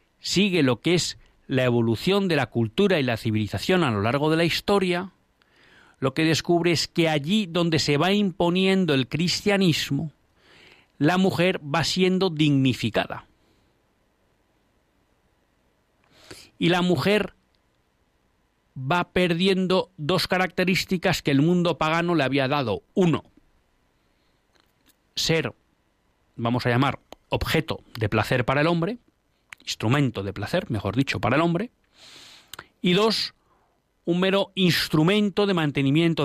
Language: Spanish